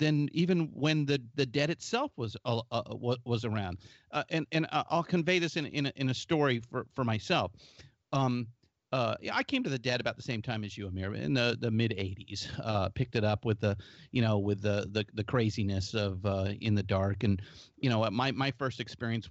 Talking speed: 220 wpm